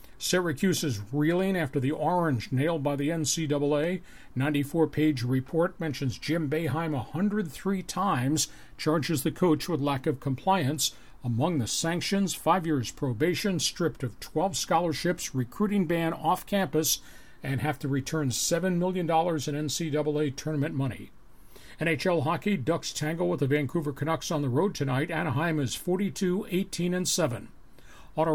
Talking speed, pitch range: 135 wpm, 145-175 Hz